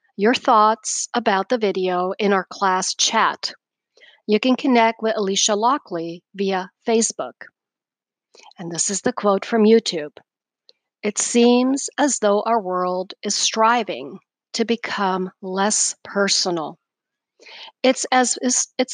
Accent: American